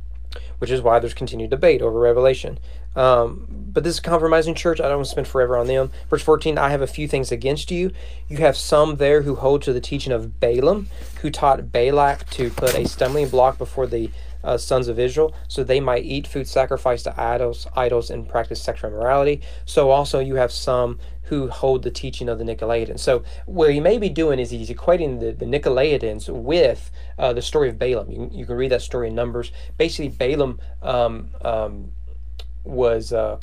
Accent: American